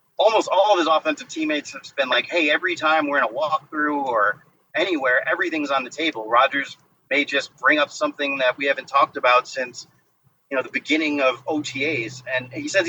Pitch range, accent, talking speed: 130-160 Hz, American, 200 wpm